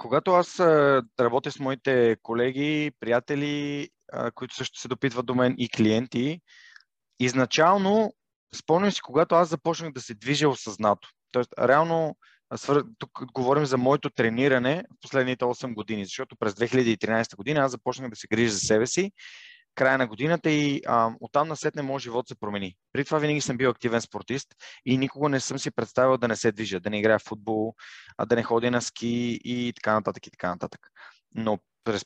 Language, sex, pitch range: Bulgarian, male, 115-145 Hz